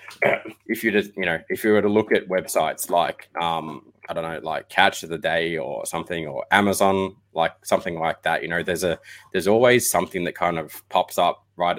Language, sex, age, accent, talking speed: English, male, 20-39, Australian, 220 wpm